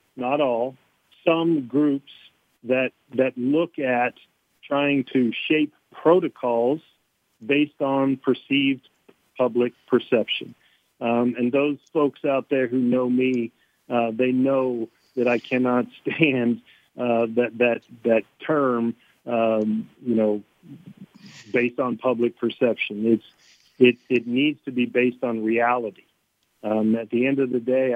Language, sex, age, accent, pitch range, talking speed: English, male, 50-69, American, 115-140 Hz, 130 wpm